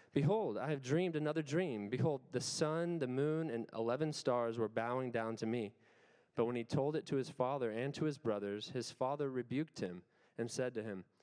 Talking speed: 210 wpm